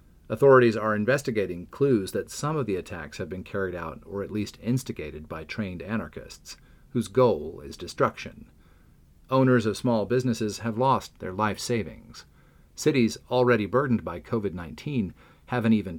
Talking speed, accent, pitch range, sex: 155 wpm, American, 90-120 Hz, male